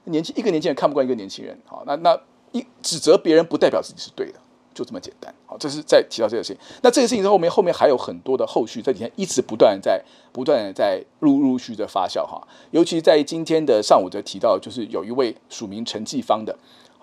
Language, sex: Chinese, male